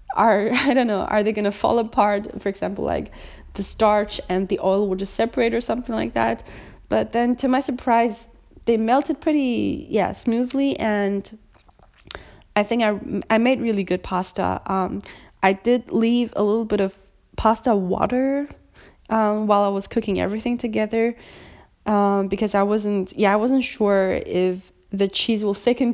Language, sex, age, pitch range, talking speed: English, female, 20-39, 195-230 Hz, 170 wpm